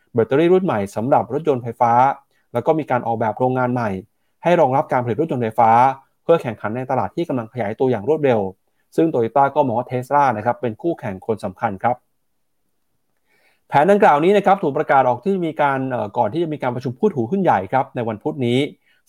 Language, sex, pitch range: Thai, male, 115-150 Hz